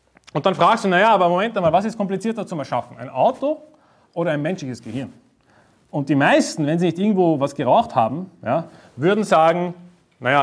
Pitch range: 160-215 Hz